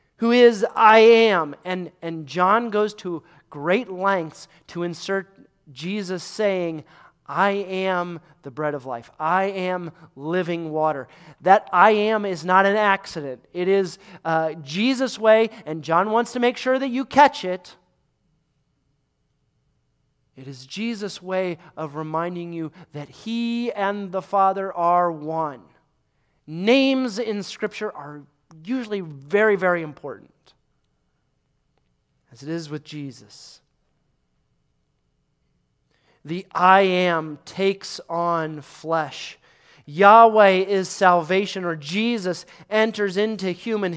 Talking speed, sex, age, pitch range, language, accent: 120 wpm, male, 30-49, 165-215 Hz, English, American